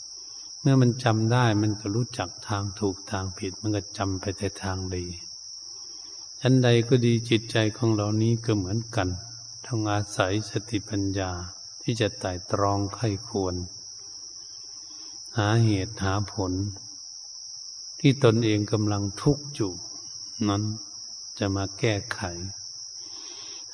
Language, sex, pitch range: Thai, male, 100-120 Hz